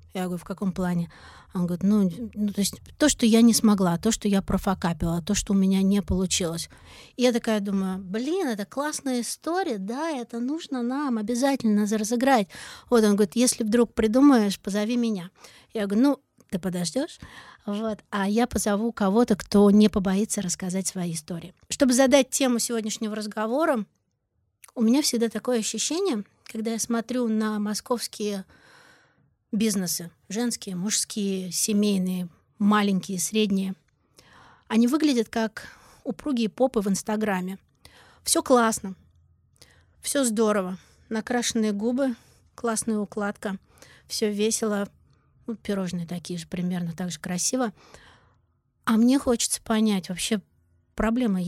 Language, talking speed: Russian, 135 wpm